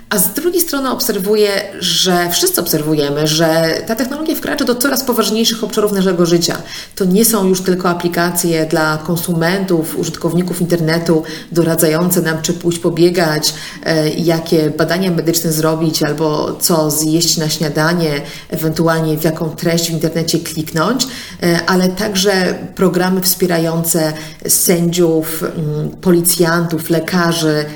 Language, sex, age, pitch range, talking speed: Polish, female, 40-59, 160-185 Hz, 120 wpm